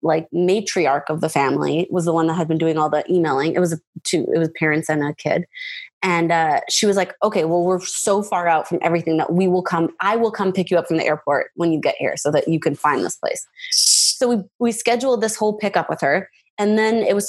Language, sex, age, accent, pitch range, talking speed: English, female, 20-39, American, 160-220 Hz, 255 wpm